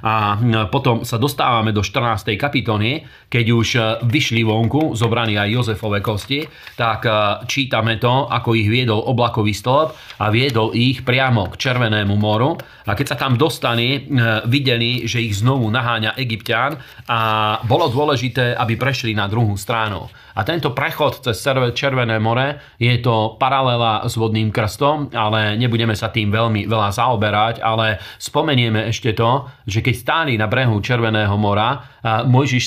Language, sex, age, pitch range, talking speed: Slovak, male, 40-59, 110-125 Hz, 150 wpm